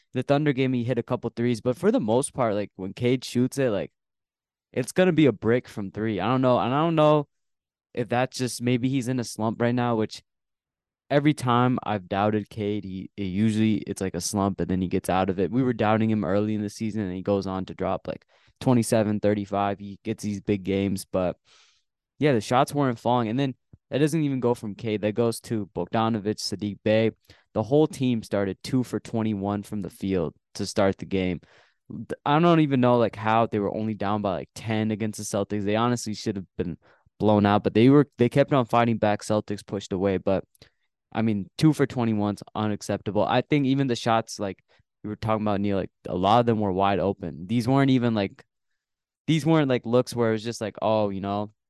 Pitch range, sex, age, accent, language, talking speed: 100-125 Hz, male, 20-39, American, English, 230 wpm